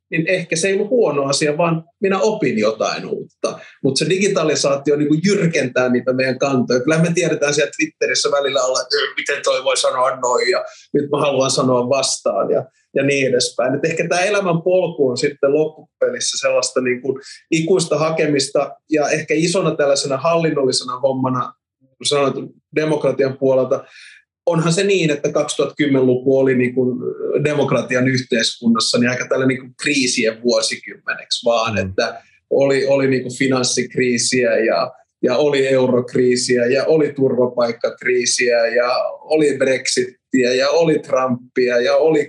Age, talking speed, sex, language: 30-49, 140 wpm, male, Finnish